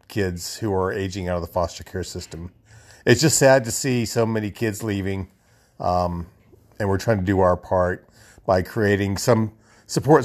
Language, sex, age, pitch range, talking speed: English, male, 40-59, 95-115 Hz, 180 wpm